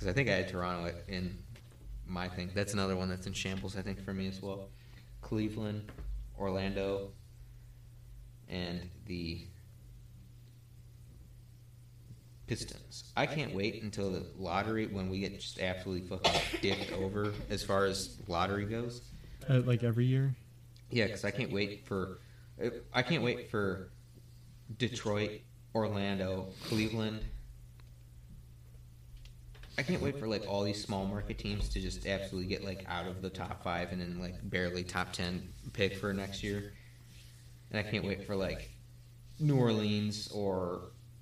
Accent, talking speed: American, 145 wpm